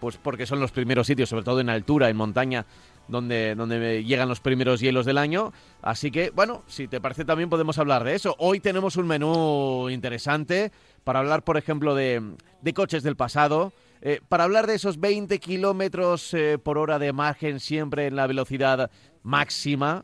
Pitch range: 130-175 Hz